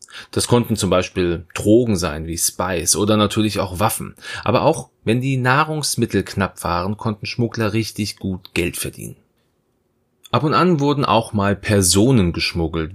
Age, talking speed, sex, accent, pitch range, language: 30-49, 155 wpm, male, German, 95-120 Hz, German